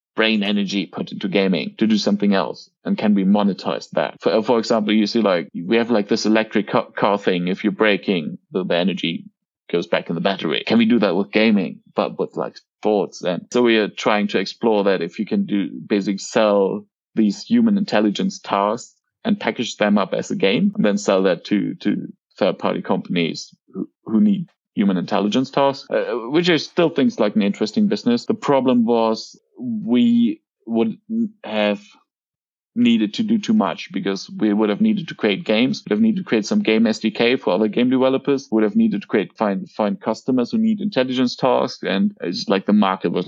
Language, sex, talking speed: English, male, 200 wpm